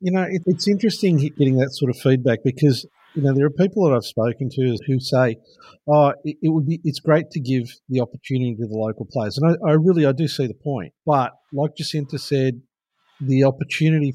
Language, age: English, 50-69